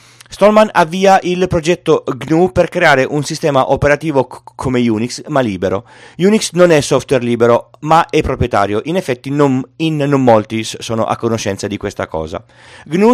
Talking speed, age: 165 wpm, 40-59